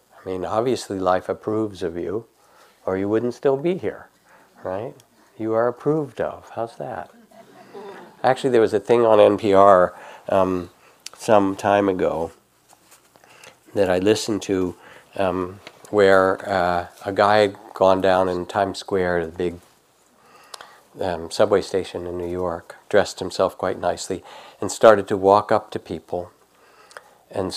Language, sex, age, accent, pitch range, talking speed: English, male, 60-79, American, 90-115 Hz, 145 wpm